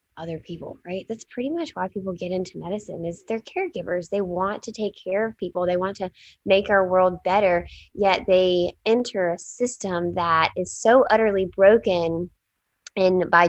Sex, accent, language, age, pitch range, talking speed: female, American, English, 10-29, 170-200 Hz, 180 wpm